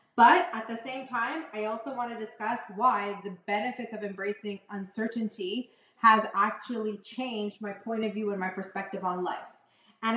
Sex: female